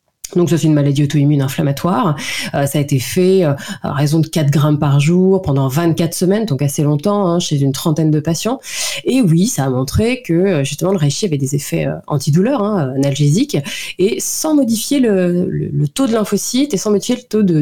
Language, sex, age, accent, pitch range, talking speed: French, female, 30-49, French, 145-195 Hz, 215 wpm